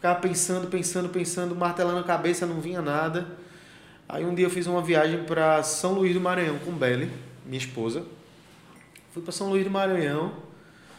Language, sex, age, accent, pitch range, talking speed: Portuguese, male, 20-39, Brazilian, 150-195 Hz, 175 wpm